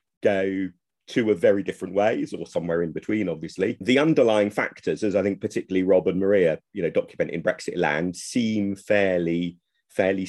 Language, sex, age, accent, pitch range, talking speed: English, male, 40-59, British, 85-110 Hz, 175 wpm